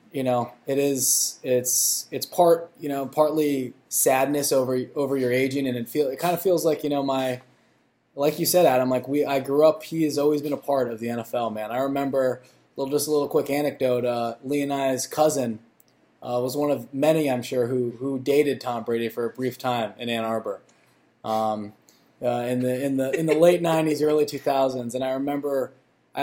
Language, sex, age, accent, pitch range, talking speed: English, male, 20-39, American, 125-140 Hz, 215 wpm